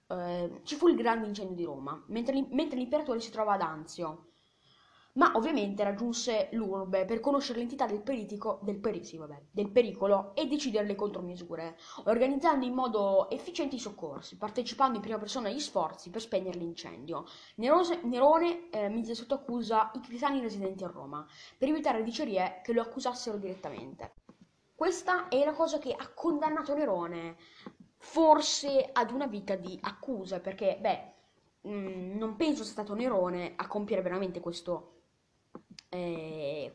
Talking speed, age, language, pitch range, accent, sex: 150 wpm, 20-39, Italian, 185-265 Hz, native, female